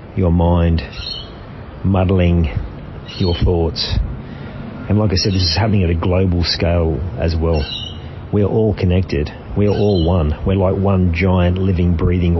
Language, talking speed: English, 145 wpm